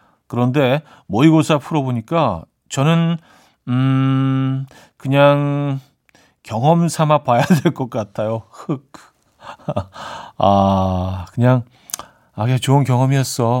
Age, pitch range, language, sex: 40-59, 115-155 Hz, Korean, male